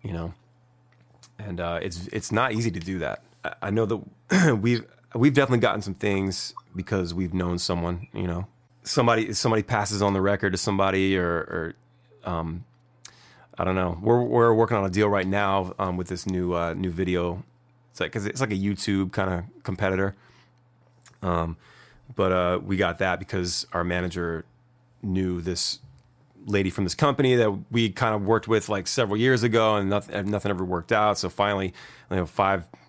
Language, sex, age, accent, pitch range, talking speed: English, male, 30-49, American, 90-120 Hz, 190 wpm